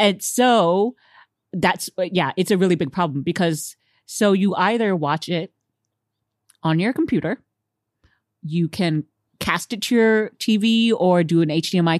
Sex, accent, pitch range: female, American, 150-215 Hz